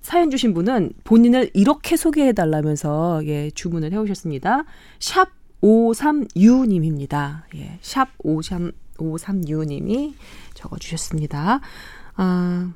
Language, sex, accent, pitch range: Korean, female, native, 165-255 Hz